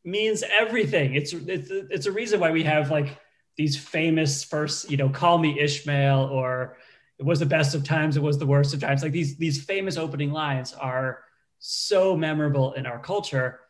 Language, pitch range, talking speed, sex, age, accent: English, 135-160 Hz, 195 wpm, male, 30-49, American